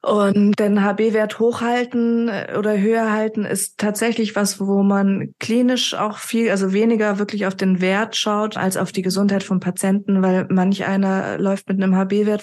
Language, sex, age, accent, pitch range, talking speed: German, female, 20-39, German, 190-215 Hz, 170 wpm